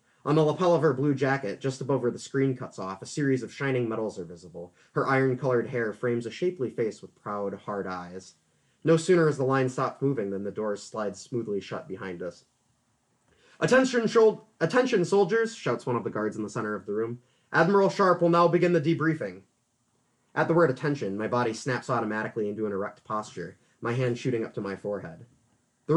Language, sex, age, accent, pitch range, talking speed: English, male, 30-49, American, 110-155 Hz, 205 wpm